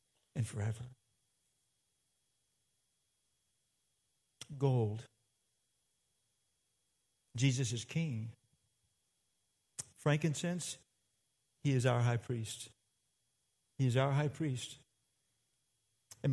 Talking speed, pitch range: 65 wpm, 120-150 Hz